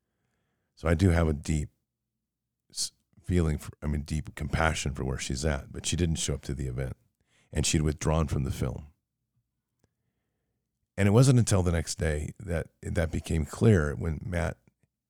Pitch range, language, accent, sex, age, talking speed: 75-100 Hz, English, American, male, 50-69, 165 wpm